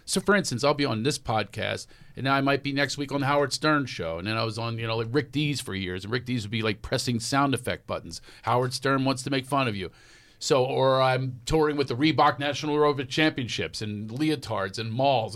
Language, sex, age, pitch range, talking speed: English, male, 50-69, 105-135 Hz, 250 wpm